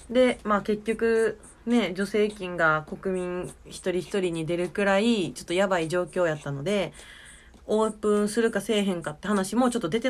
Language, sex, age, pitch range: Japanese, female, 20-39, 185-260 Hz